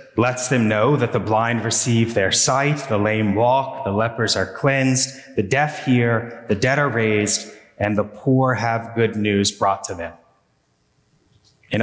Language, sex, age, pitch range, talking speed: English, male, 30-49, 115-135 Hz, 165 wpm